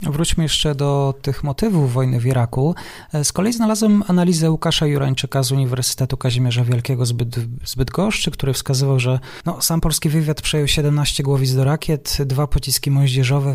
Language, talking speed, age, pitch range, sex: Polish, 155 wpm, 20-39, 125-145 Hz, male